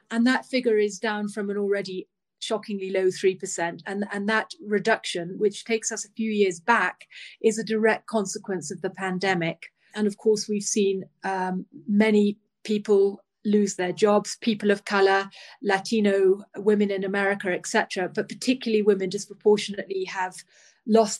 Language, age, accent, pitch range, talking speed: English, 30-49, British, 185-210 Hz, 155 wpm